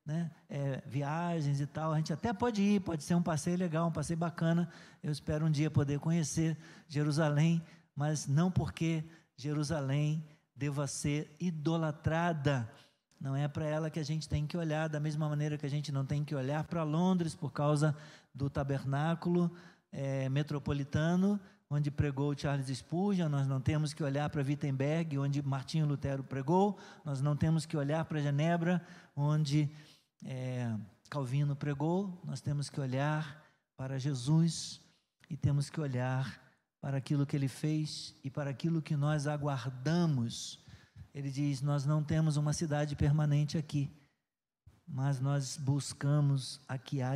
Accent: Brazilian